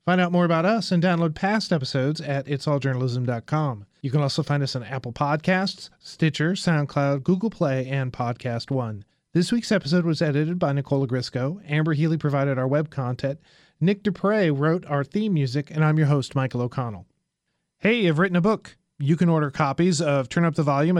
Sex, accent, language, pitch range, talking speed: male, American, English, 140-175 Hz, 190 wpm